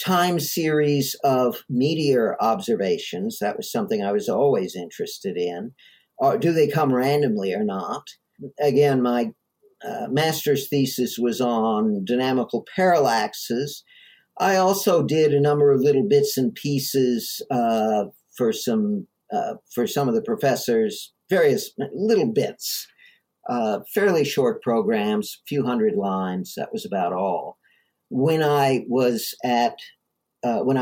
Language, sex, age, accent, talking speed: English, male, 50-69, American, 130 wpm